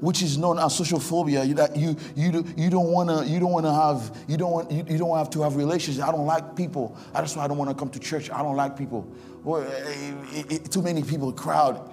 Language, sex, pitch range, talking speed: English, male, 150-225 Hz, 245 wpm